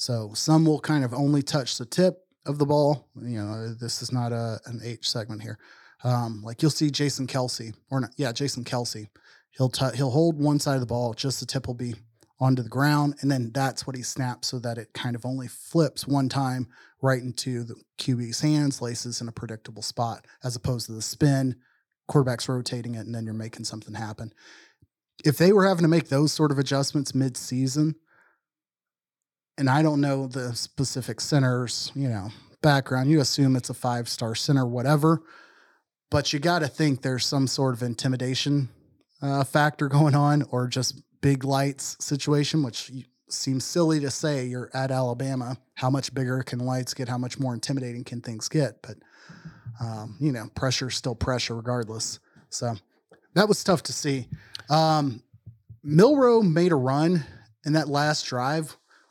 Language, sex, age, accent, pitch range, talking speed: English, male, 30-49, American, 120-145 Hz, 185 wpm